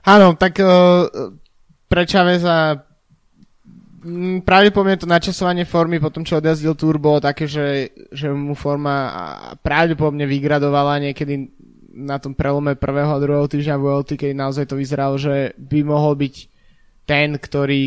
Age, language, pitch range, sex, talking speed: 20-39, Slovak, 140-155 Hz, male, 130 wpm